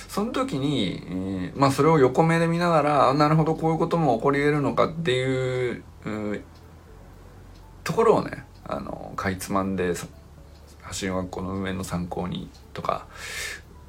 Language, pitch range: Japanese, 90-125 Hz